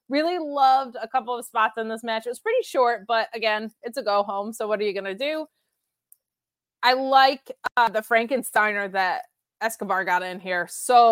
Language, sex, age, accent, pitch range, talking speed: English, female, 20-39, American, 210-265 Hz, 195 wpm